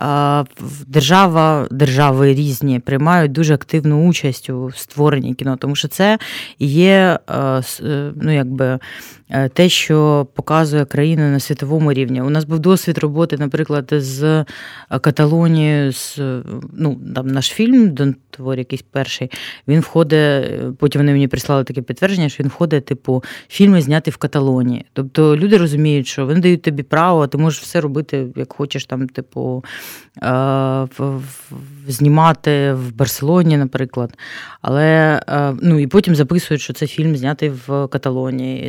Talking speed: 135 wpm